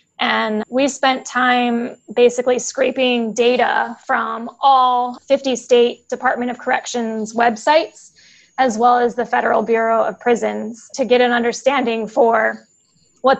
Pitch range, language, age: 225-250 Hz, English, 10-29